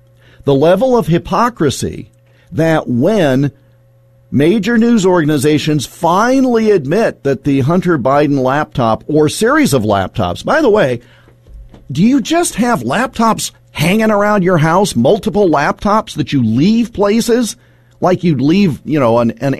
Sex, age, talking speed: male, 50-69, 140 wpm